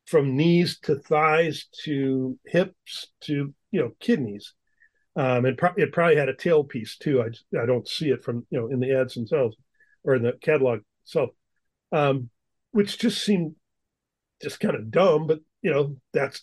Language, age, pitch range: English, 40-59, 130-165 Hz